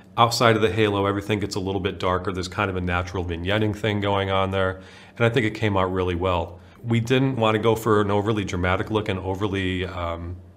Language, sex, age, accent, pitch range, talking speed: English, male, 40-59, American, 95-110 Hz, 235 wpm